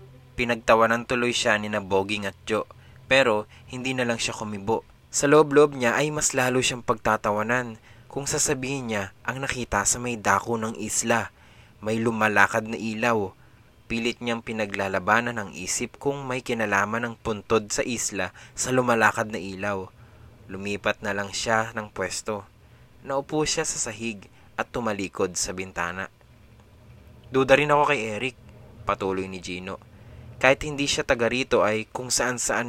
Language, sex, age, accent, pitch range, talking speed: English, male, 20-39, Filipino, 105-135 Hz, 145 wpm